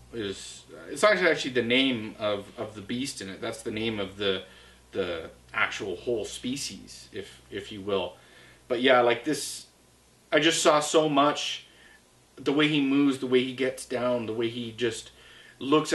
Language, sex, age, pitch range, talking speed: English, male, 30-49, 105-130 Hz, 175 wpm